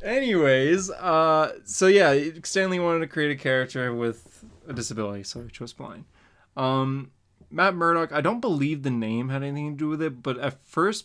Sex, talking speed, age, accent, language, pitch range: male, 185 wpm, 20-39, American, English, 110-140 Hz